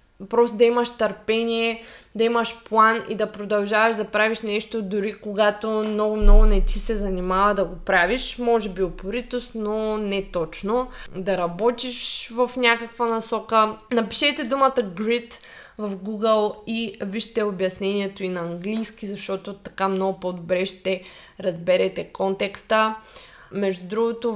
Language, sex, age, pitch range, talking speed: Bulgarian, female, 20-39, 195-230 Hz, 135 wpm